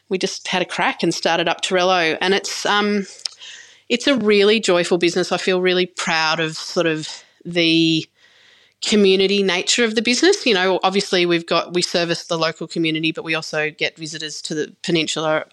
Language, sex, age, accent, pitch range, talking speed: English, female, 30-49, Australian, 170-210 Hz, 185 wpm